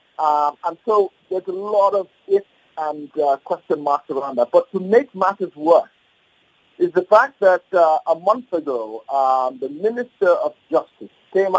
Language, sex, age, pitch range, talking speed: English, male, 50-69, 145-195 Hz, 170 wpm